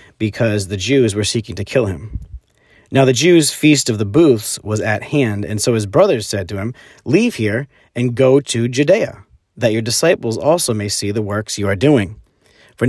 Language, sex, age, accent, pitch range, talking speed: English, male, 40-59, American, 100-130 Hz, 200 wpm